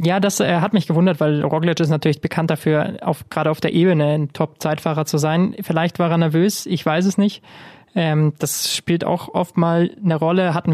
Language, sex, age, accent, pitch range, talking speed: German, male, 20-39, German, 160-175 Hz, 210 wpm